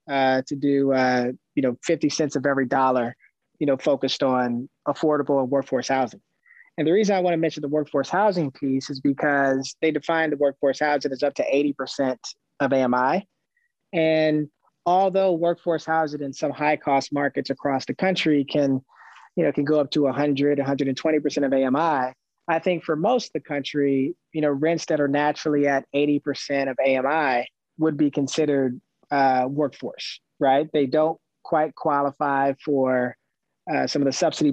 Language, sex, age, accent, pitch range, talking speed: English, male, 20-39, American, 135-155 Hz, 170 wpm